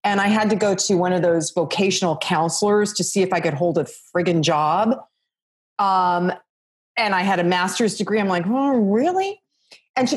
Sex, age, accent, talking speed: female, 40-59, American, 195 wpm